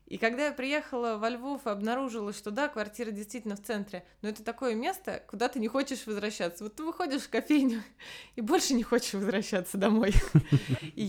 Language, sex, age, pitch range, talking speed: Russian, female, 20-39, 195-245 Hz, 190 wpm